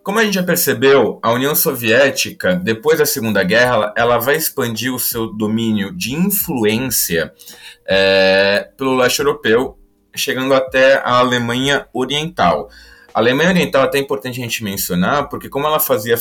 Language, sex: Portuguese, male